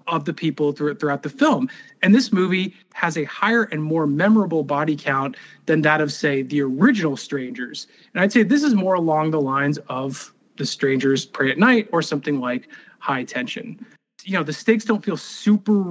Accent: American